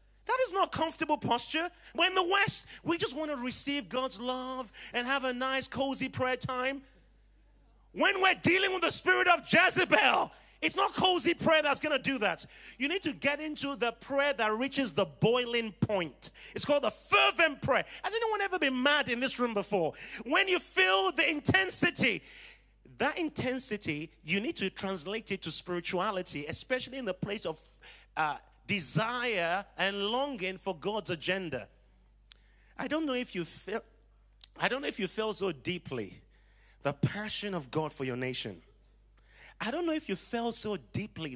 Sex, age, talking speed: male, 30-49, 175 wpm